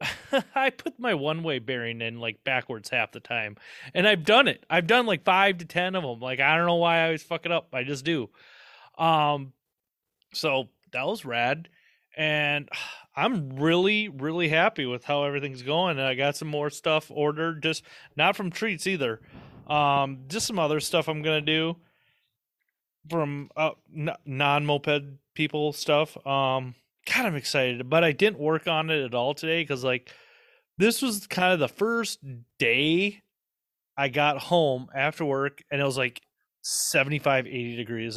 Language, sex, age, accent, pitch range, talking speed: English, male, 30-49, American, 140-170 Hz, 175 wpm